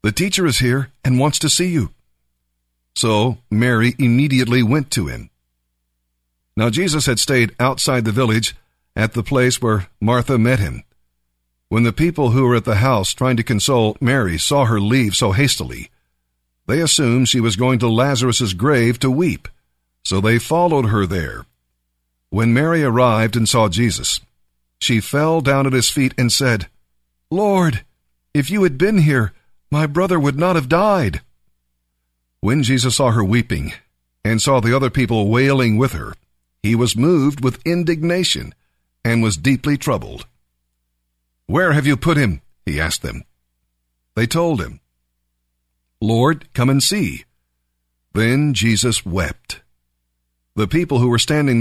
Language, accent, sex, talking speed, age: English, American, male, 155 wpm, 50-69